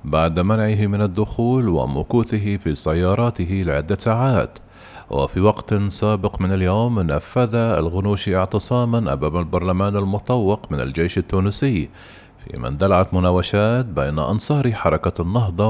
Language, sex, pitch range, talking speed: Arabic, male, 90-110 Hz, 120 wpm